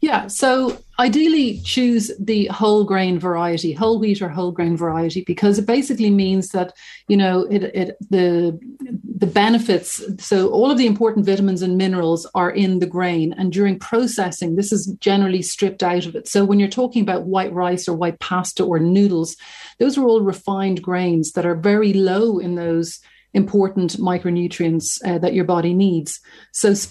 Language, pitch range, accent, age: English, 180-210 Hz, Irish, 40-59